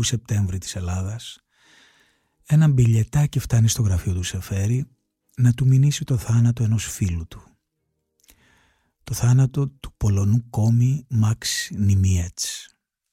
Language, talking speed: Greek, 115 wpm